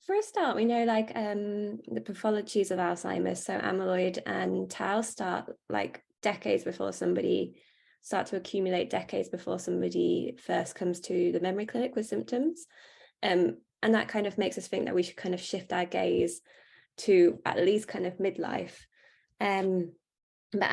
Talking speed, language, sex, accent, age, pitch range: 170 wpm, English, female, British, 20-39, 180-215 Hz